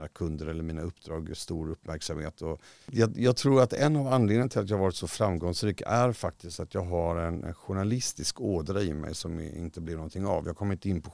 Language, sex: Swedish, male